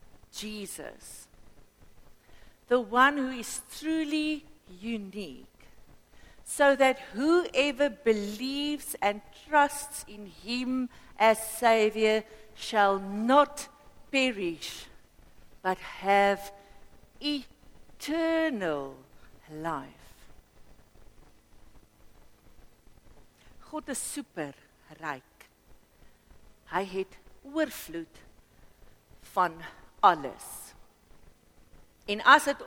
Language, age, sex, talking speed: English, 60-79, female, 65 wpm